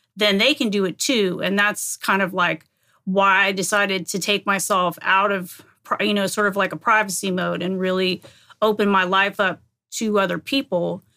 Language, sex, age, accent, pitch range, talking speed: English, female, 30-49, American, 190-215 Hz, 195 wpm